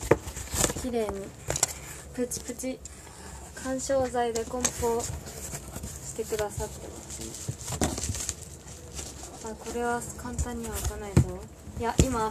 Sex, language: female, Japanese